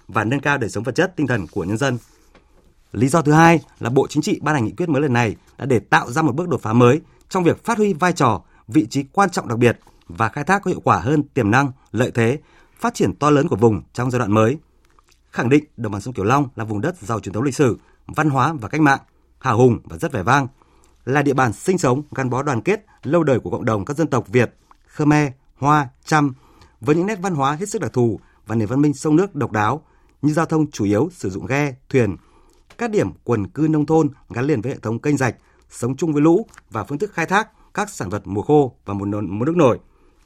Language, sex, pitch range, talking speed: Vietnamese, male, 115-155 Hz, 260 wpm